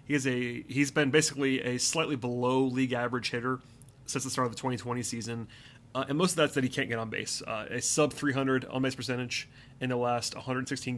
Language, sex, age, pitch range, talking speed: English, male, 30-49, 125-140 Hz, 225 wpm